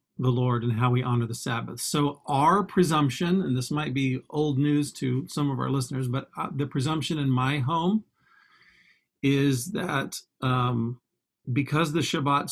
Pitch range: 130-155 Hz